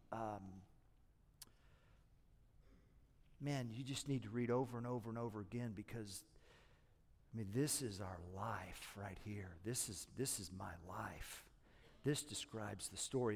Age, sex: 50-69, male